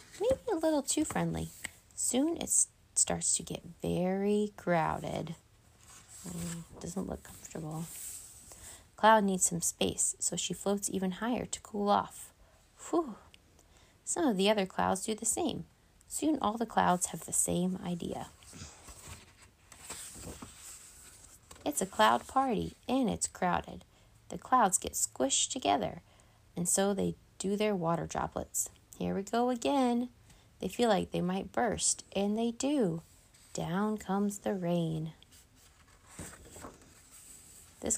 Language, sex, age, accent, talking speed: English, female, 20-39, American, 130 wpm